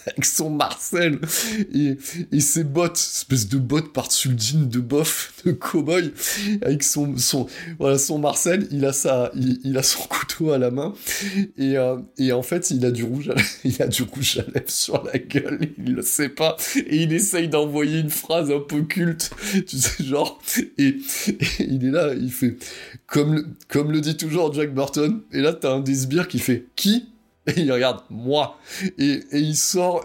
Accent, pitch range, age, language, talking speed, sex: French, 135-170 Hz, 20-39, French, 200 wpm, male